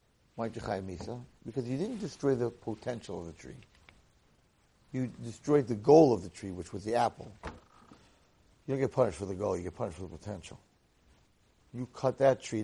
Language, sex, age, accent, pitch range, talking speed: English, male, 60-79, American, 115-145 Hz, 175 wpm